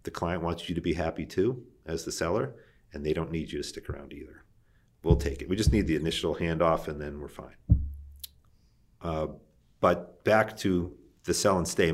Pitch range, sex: 80-100 Hz, male